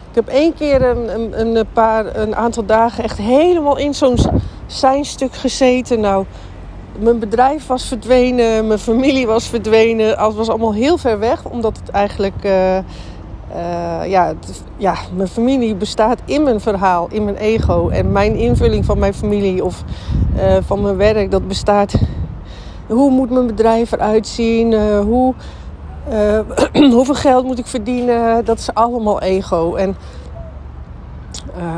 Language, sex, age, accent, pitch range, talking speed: Dutch, female, 40-59, Dutch, 195-255 Hz, 145 wpm